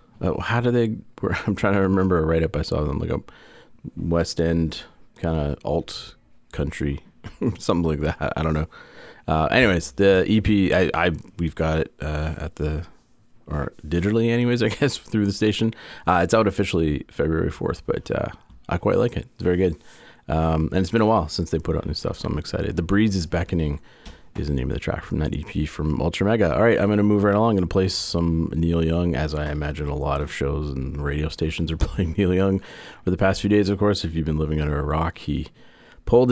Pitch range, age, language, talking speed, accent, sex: 75-100 Hz, 30-49, English, 230 wpm, American, male